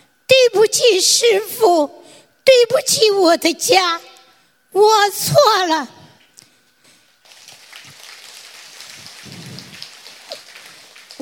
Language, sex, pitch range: Chinese, female, 320-410 Hz